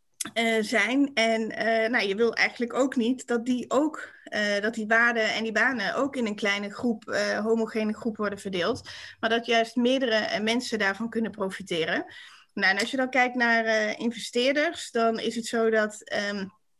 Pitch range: 220-255 Hz